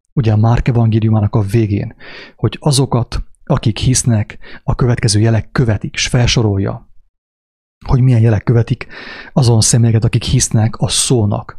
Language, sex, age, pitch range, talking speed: English, male, 30-49, 110-135 Hz, 130 wpm